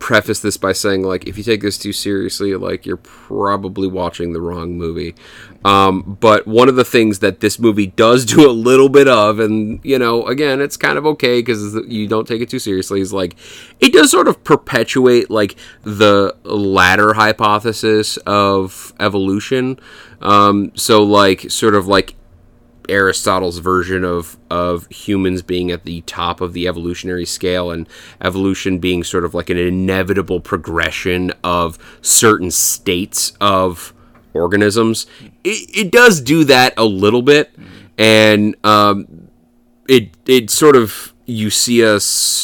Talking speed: 155 wpm